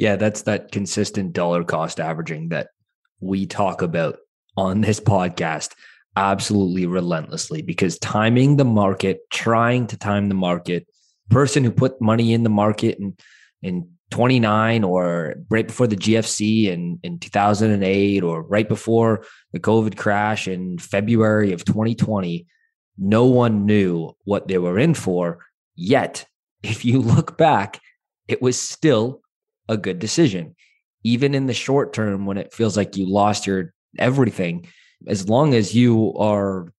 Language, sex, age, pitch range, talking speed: English, male, 20-39, 95-115 Hz, 155 wpm